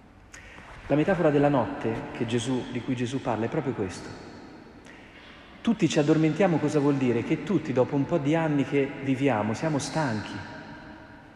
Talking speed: 160 wpm